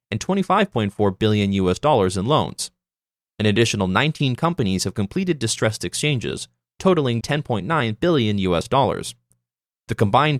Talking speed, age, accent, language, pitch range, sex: 125 wpm, 20-39, American, English, 95-150 Hz, male